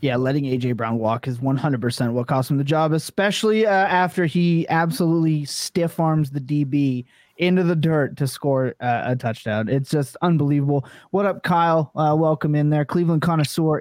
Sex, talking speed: male, 175 wpm